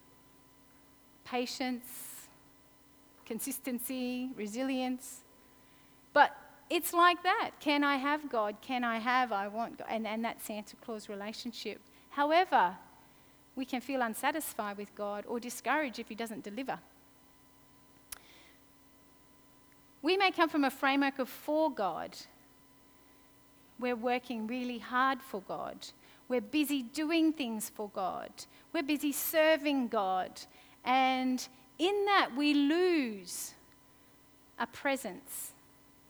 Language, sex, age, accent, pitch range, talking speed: English, female, 40-59, Australian, 240-300 Hz, 115 wpm